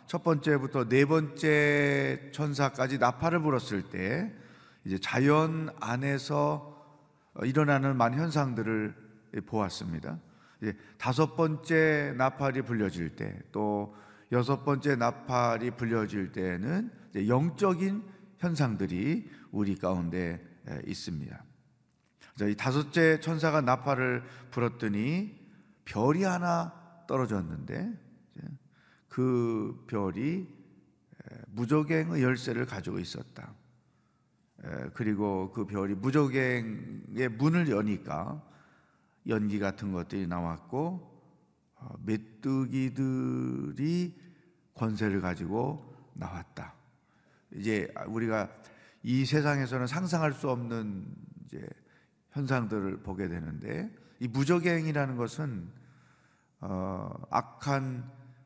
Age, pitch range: 40-59, 105-150 Hz